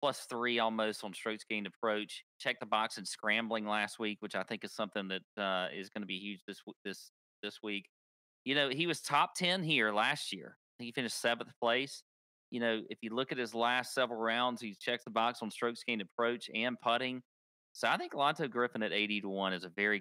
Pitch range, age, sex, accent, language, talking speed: 105-130 Hz, 40-59, male, American, English, 225 wpm